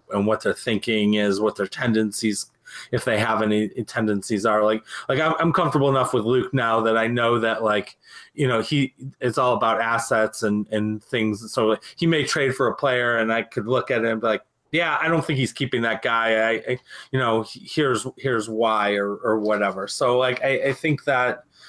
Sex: male